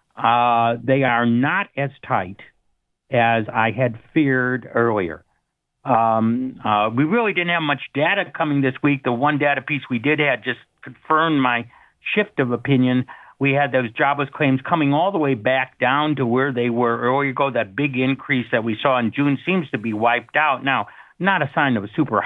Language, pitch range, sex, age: English, 115-140 Hz, male, 60-79